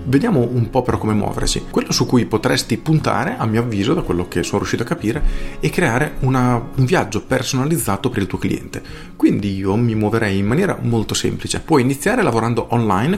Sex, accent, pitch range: male, native, 100-135 Hz